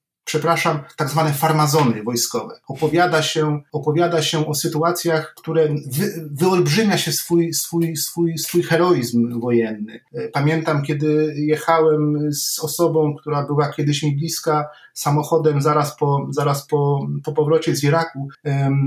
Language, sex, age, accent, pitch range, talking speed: Polish, male, 40-59, native, 150-170 Hz, 120 wpm